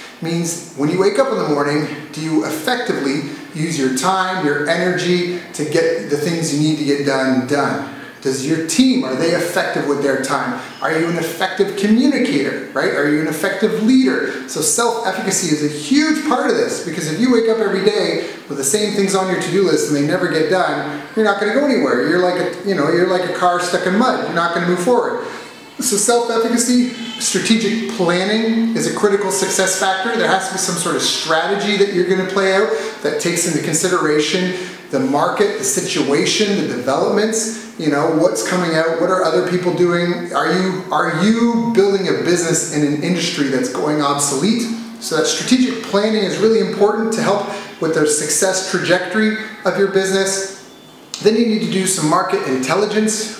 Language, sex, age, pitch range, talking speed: English, male, 30-49, 160-215 Hz, 195 wpm